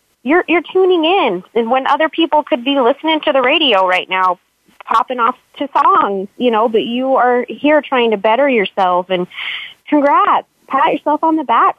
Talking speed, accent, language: 190 wpm, American, English